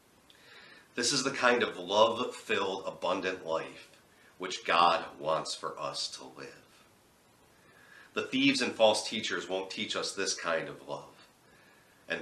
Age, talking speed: 40-59, 140 wpm